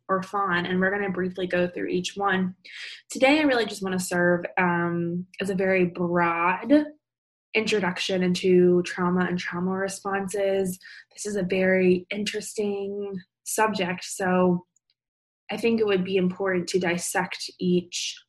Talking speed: 140 wpm